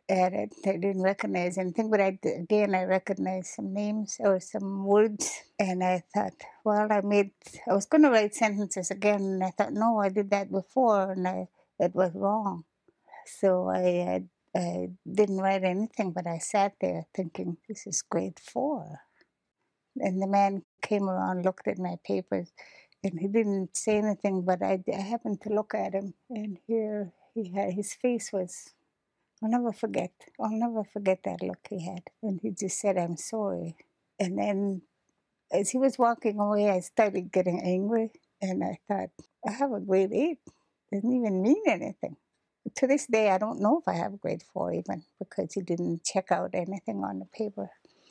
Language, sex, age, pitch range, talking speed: English, female, 60-79, 185-210 Hz, 180 wpm